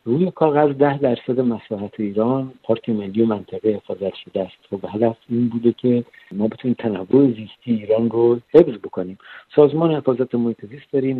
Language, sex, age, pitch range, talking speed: Persian, male, 60-79, 115-150 Hz, 170 wpm